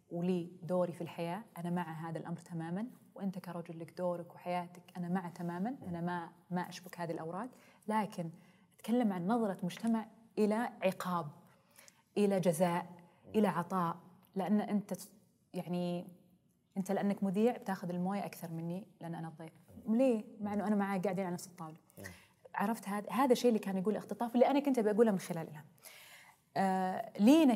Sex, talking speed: female, 155 wpm